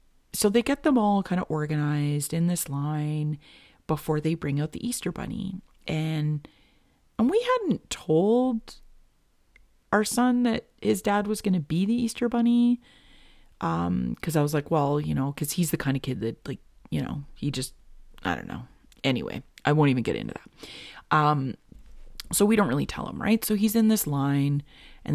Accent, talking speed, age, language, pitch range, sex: American, 190 wpm, 30-49, English, 150-215 Hz, female